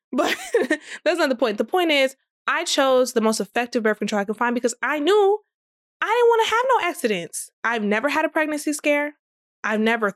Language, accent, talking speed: English, American, 215 wpm